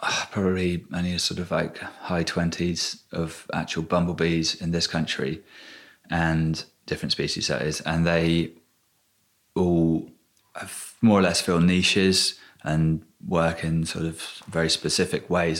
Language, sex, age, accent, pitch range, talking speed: English, male, 30-49, British, 80-85 Hz, 140 wpm